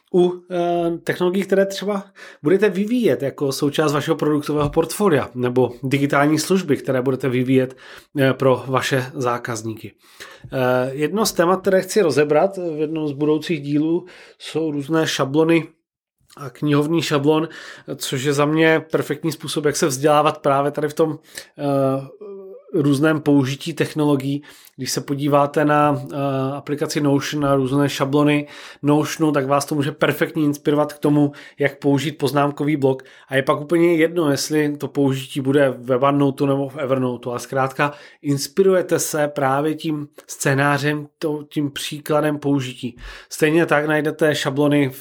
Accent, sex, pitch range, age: native, male, 140-155 Hz, 30-49